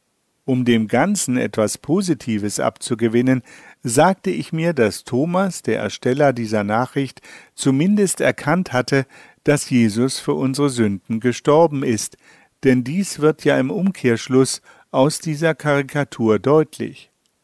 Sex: male